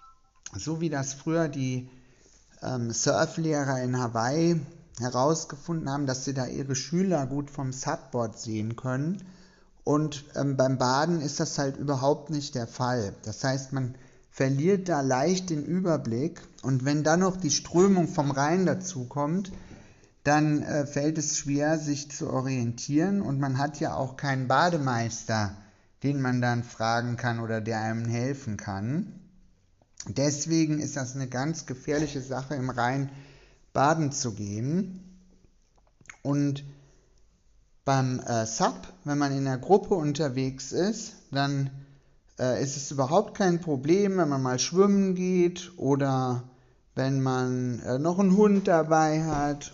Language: German